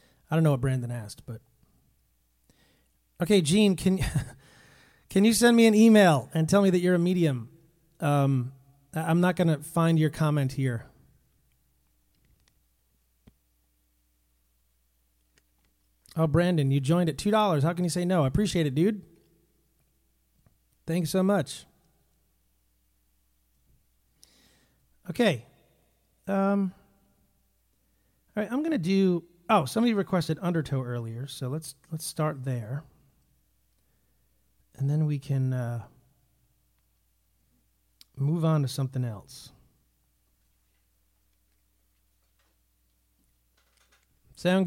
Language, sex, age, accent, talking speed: English, male, 40-59, American, 105 wpm